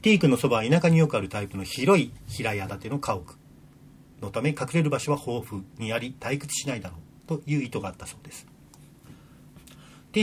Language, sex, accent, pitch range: Japanese, male, native, 120-165 Hz